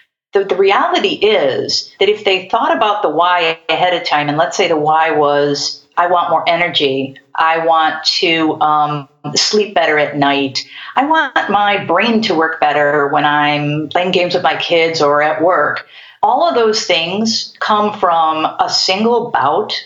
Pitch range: 155-200 Hz